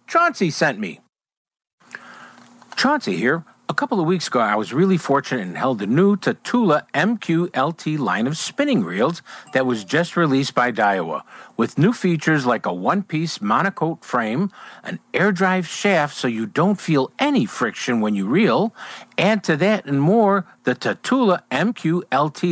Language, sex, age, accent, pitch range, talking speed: English, male, 50-69, American, 150-210 Hz, 155 wpm